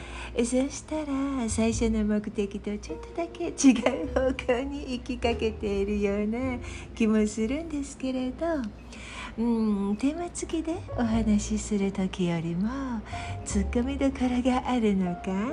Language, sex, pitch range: Japanese, female, 205-275 Hz